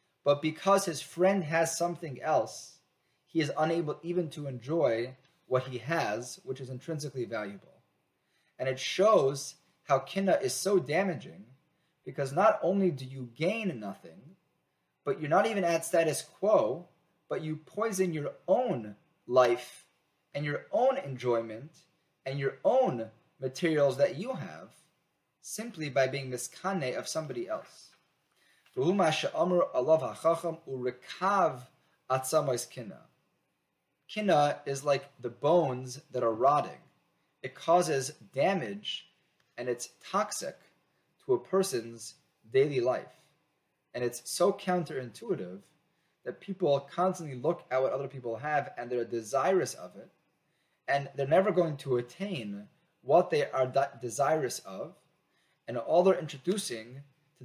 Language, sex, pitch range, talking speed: English, male, 130-175 Hz, 125 wpm